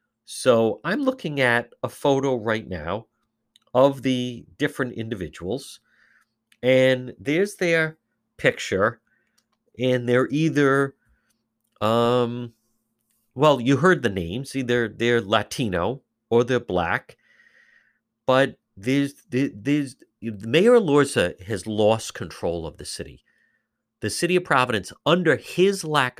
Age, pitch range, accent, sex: 50-69, 110-145 Hz, American, male